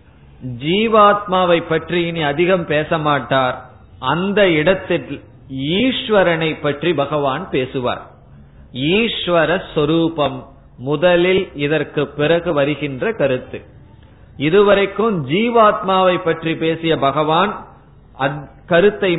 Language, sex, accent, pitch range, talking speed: Tamil, male, native, 140-175 Hz, 75 wpm